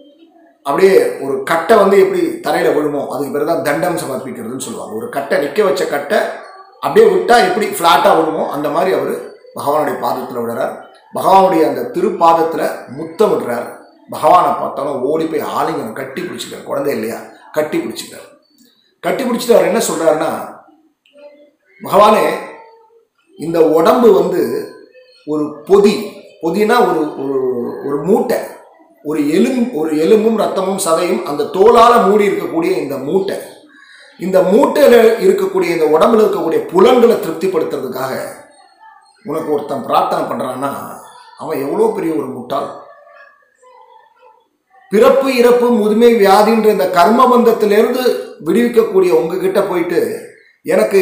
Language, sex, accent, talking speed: Tamil, male, native, 115 wpm